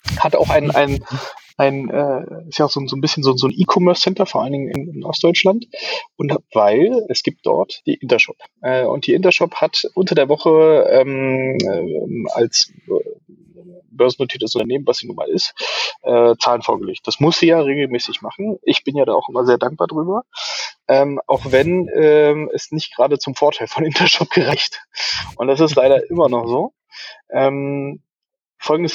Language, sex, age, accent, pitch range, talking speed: German, male, 20-39, German, 140-185 Hz, 180 wpm